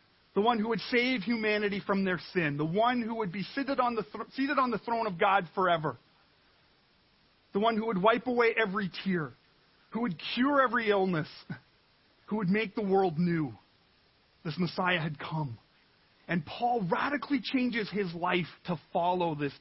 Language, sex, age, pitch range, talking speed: English, male, 40-59, 185-245 Hz, 165 wpm